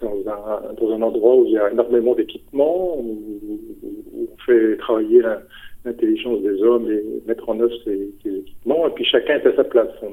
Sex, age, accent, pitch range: male, 50-69, French, 325-400 Hz